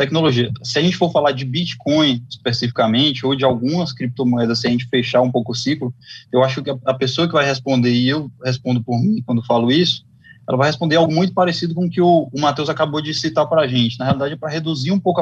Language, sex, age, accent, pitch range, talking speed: English, male, 20-39, Brazilian, 125-170 Hz, 235 wpm